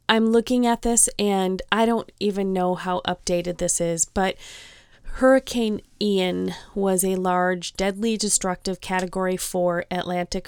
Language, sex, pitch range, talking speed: English, female, 175-200 Hz, 135 wpm